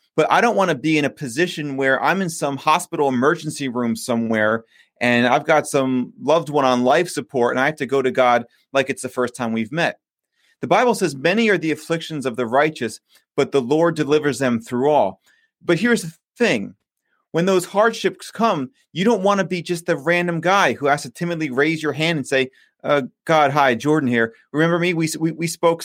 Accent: American